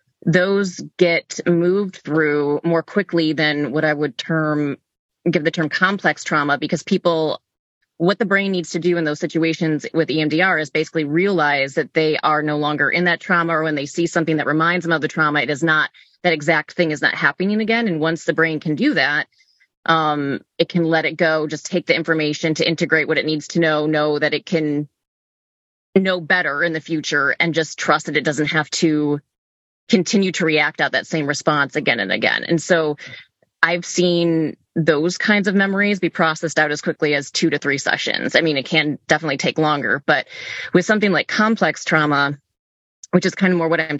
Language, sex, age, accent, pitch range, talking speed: English, female, 30-49, American, 150-170 Hz, 205 wpm